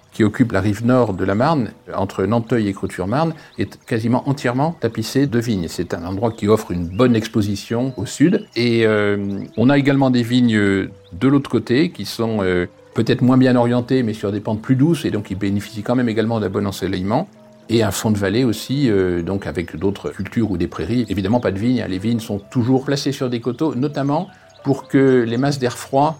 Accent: French